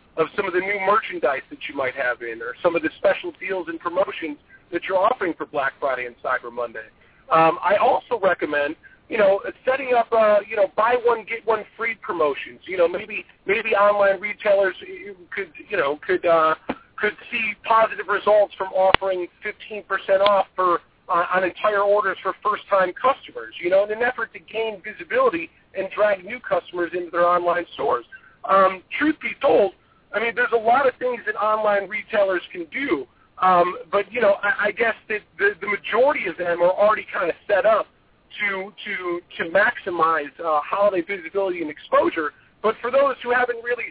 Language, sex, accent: English, male, American